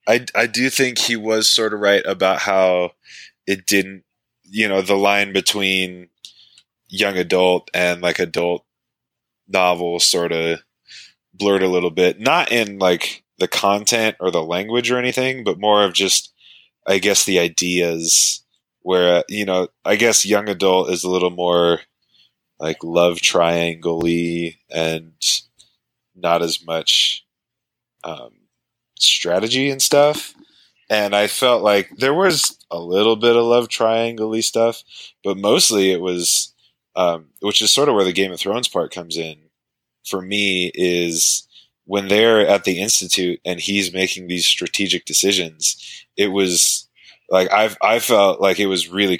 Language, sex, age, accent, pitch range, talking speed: English, male, 20-39, American, 90-105 Hz, 150 wpm